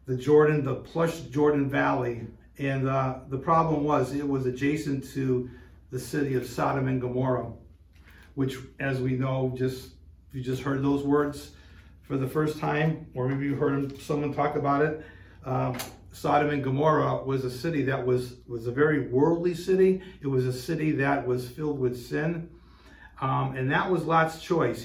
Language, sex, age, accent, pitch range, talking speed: English, male, 50-69, American, 125-155 Hz, 175 wpm